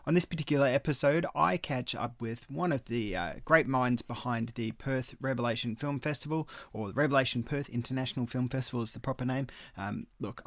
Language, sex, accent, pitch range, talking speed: English, male, Australian, 120-145 Hz, 190 wpm